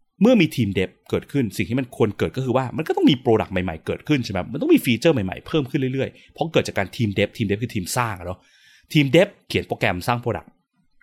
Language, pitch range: Thai, 95-130 Hz